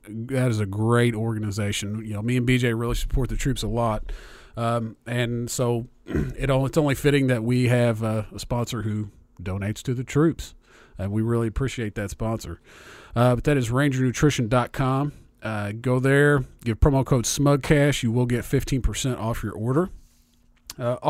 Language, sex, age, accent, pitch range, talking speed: English, male, 40-59, American, 110-140 Hz, 165 wpm